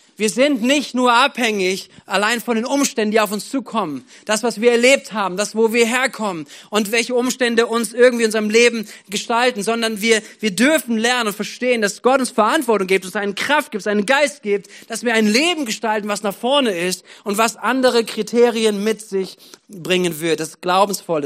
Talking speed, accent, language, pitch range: 200 wpm, German, German, 190-240 Hz